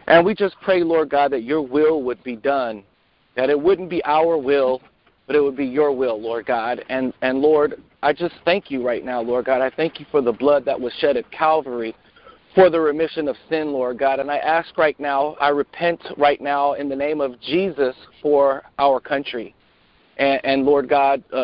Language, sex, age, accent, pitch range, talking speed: English, male, 40-59, American, 135-160 Hz, 215 wpm